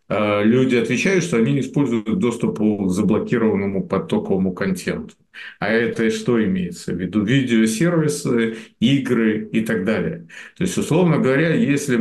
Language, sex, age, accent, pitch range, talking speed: Russian, male, 50-69, native, 105-140 Hz, 135 wpm